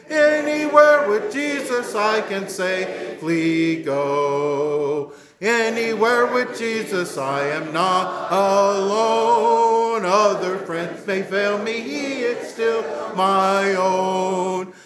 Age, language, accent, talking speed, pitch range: 50-69, English, American, 100 wpm, 185-230 Hz